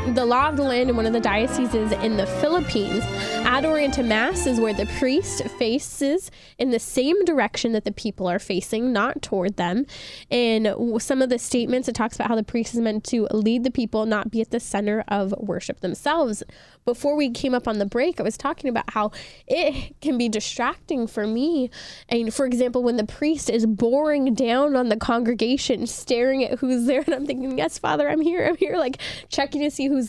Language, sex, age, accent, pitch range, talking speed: English, female, 10-29, American, 225-275 Hz, 210 wpm